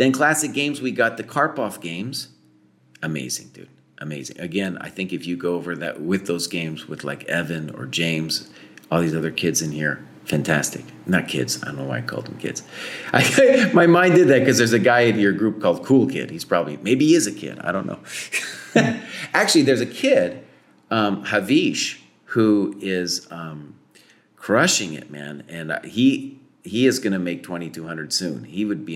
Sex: male